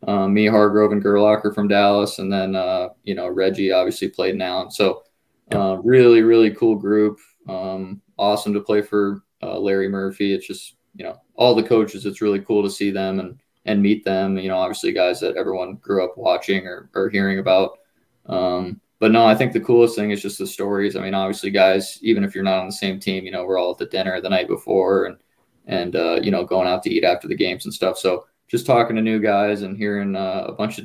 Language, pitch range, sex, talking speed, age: English, 95-105 Hz, male, 235 wpm, 20-39